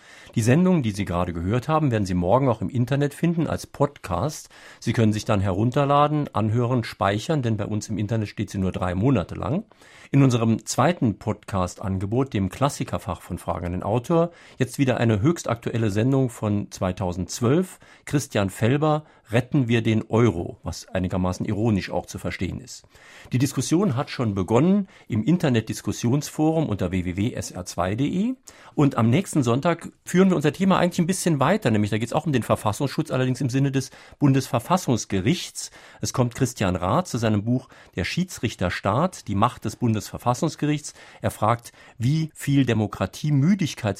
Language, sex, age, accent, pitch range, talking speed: German, male, 50-69, German, 105-145 Hz, 160 wpm